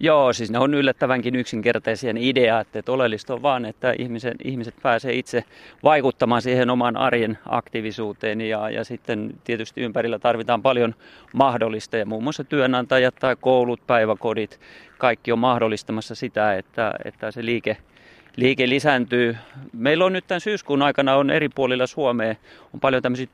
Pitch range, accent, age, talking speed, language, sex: 115-140 Hz, native, 30-49, 150 wpm, Finnish, male